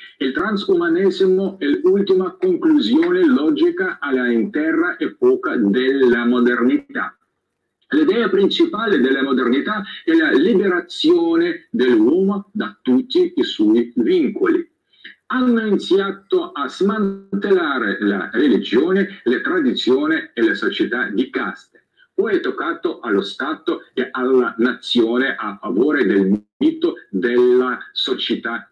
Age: 50-69